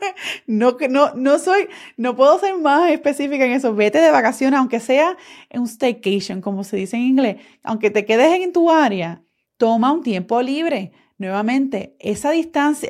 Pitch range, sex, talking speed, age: 200-275 Hz, female, 170 wpm, 30-49